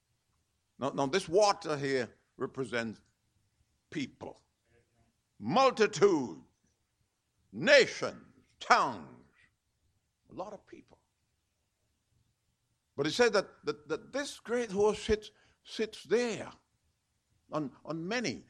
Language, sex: English, male